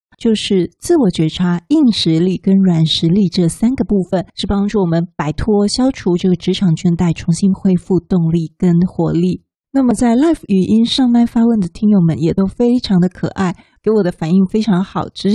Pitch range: 175-215 Hz